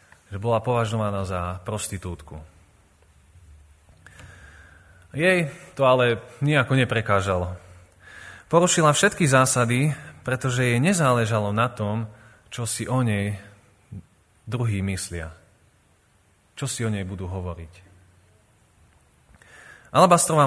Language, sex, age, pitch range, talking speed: Slovak, male, 30-49, 95-125 Hz, 90 wpm